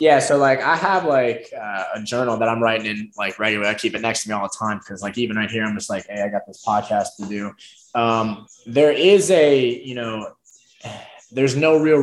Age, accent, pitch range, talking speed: 20-39, American, 105-130 Hz, 245 wpm